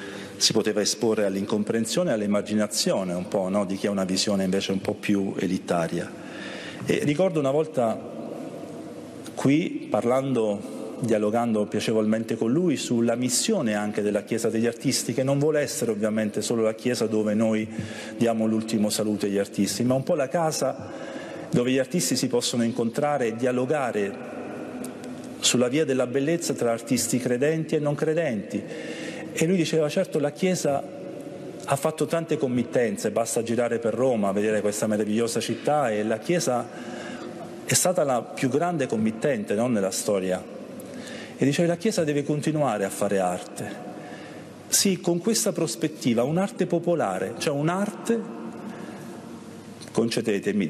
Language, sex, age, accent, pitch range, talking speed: Italian, male, 40-59, native, 105-155 Hz, 145 wpm